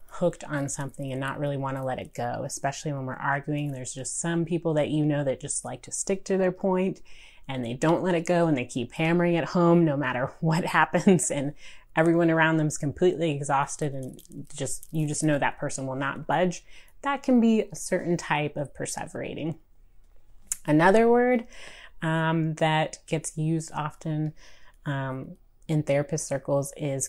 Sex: female